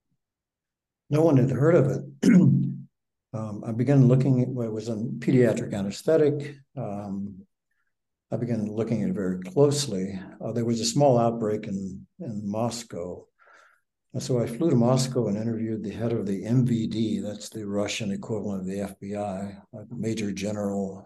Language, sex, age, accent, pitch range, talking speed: English, male, 60-79, American, 100-130 Hz, 160 wpm